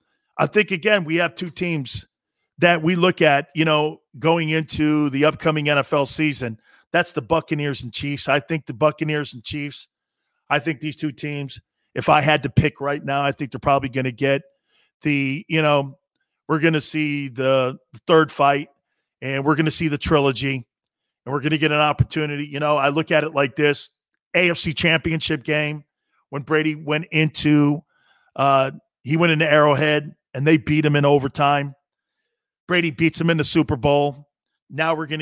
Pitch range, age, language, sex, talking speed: 140-160 Hz, 40-59, English, male, 185 wpm